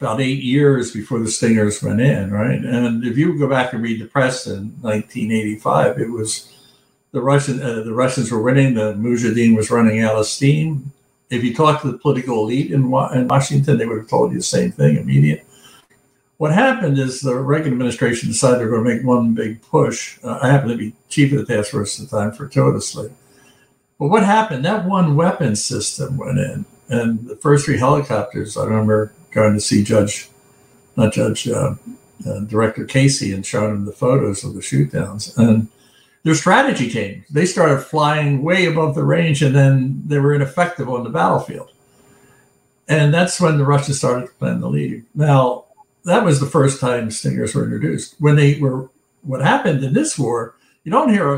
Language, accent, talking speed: English, American, 195 wpm